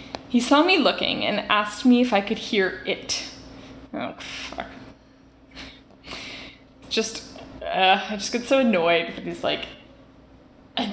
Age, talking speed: 20-39, 135 wpm